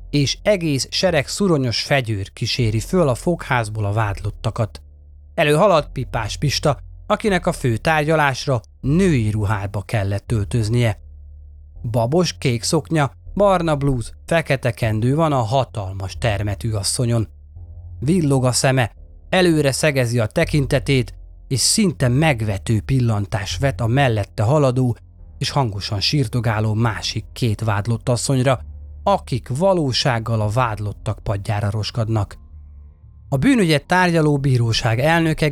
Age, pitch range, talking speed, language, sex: 30-49, 105-145 Hz, 115 wpm, Hungarian, male